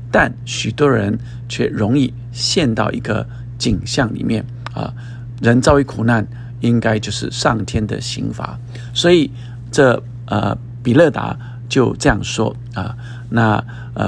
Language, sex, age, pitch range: Chinese, male, 50-69, 115-130 Hz